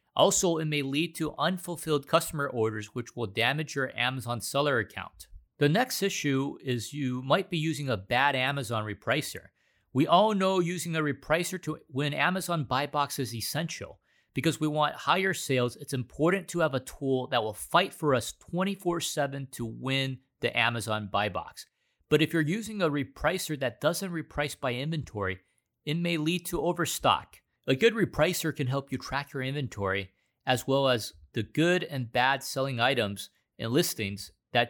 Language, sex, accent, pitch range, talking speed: English, male, American, 120-170 Hz, 175 wpm